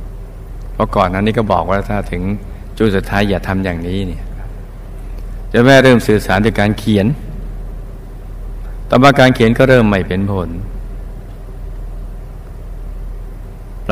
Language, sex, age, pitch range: Thai, male, 60-79, 95-105 Hz